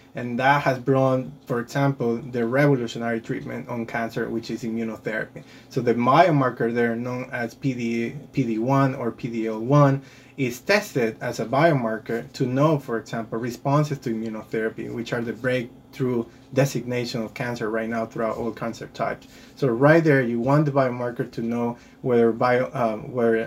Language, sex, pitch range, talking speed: English, male, 115-135 Hz, 160 wpm